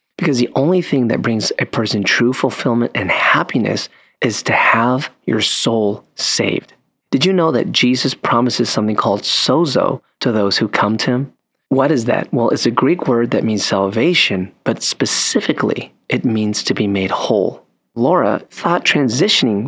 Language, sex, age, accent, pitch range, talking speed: English, male, 30-49, American, 105-130 Hz, 170 wpm